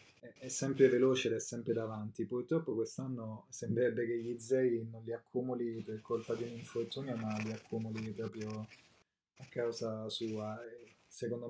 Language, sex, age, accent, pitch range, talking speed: Italian, male, 20-39, native, 110-125 Hz, 150 wpm